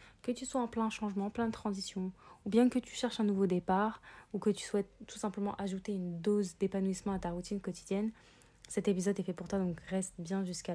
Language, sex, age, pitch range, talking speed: French, female, 20-39, 185-210 Hz, 230 wpm